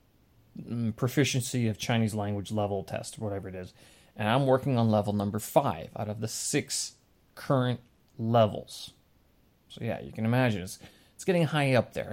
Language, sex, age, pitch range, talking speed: English, male, 30-49, 105-135 Hz, 165 wpm